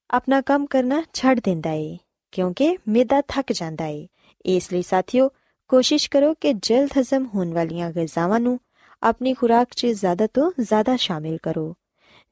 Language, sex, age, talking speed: Punjabi, female, 20-39, 145 wpm